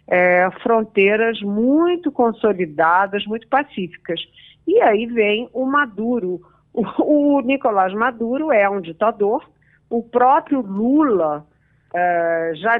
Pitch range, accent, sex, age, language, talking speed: 180-255 Hz, Brazilian, female, 50-69, Portuguese, 110 wpm